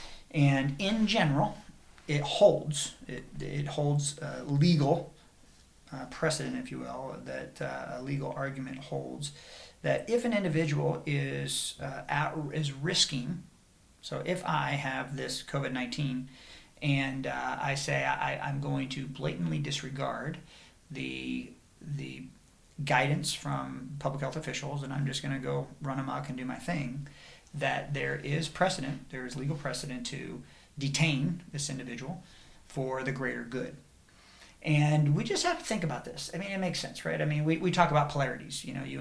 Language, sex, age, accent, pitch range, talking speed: English, male, 40-59, American, 135-155 Hz, 160 wpm